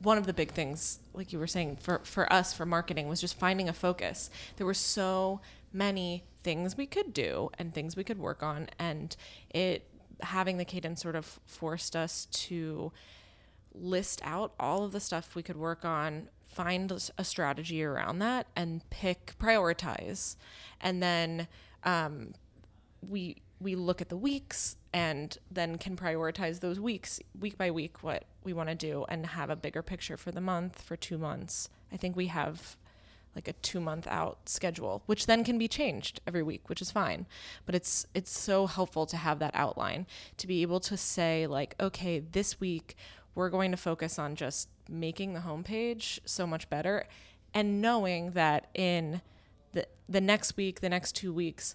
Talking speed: 180 wpm